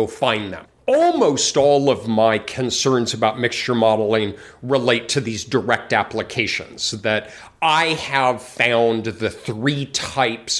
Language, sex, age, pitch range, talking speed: English, male, 40-59, 120-185 Hz, 125 wpm